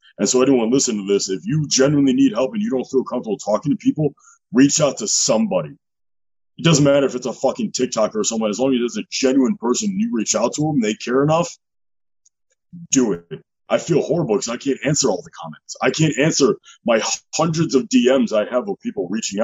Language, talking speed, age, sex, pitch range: English, 225 wpm, 30-49, male, 105-150 Hz